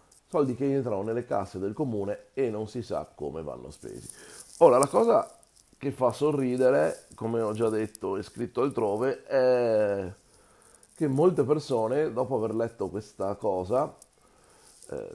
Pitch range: 105-135 Hz